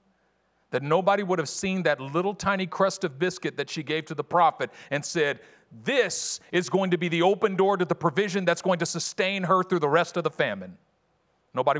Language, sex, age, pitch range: English, male, 50-69, 125-175 Hz